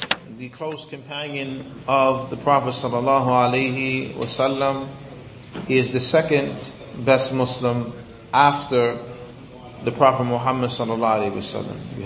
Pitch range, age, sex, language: 125-140 Hz, 30-49, male, English